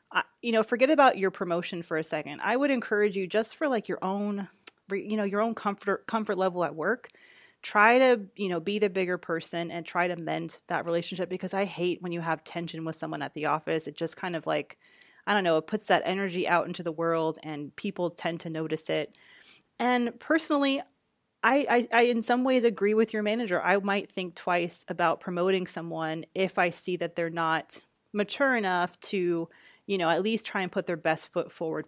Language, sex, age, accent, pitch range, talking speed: English, female, 30-49, American, 165-205 Hz, 215 wpm